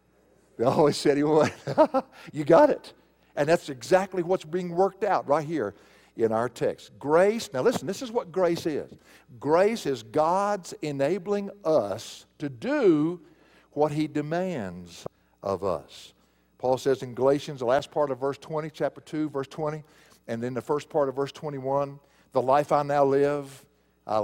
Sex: male